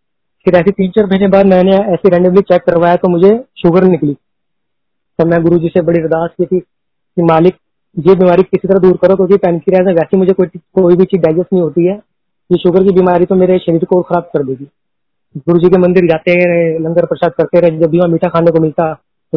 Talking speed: 210 wpm